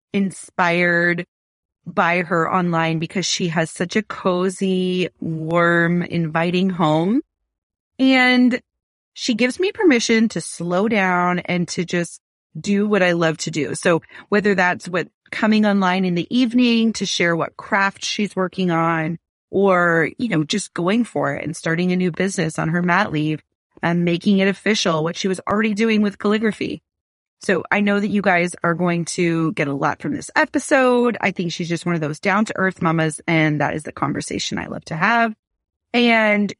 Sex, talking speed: female, 175 wpm